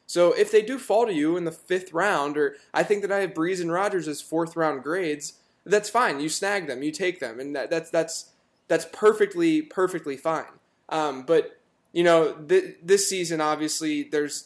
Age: 10-29